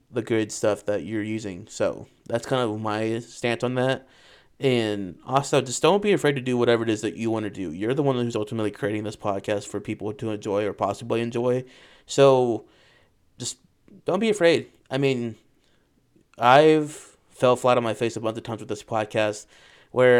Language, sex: English, male